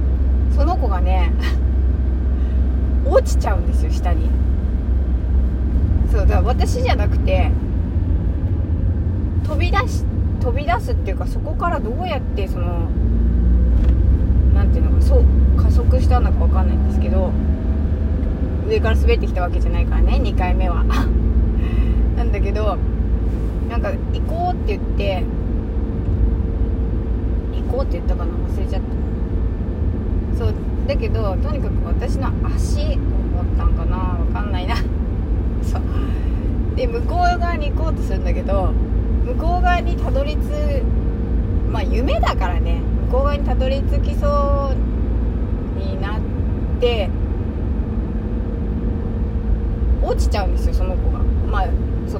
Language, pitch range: Japanese, 75-90 Hz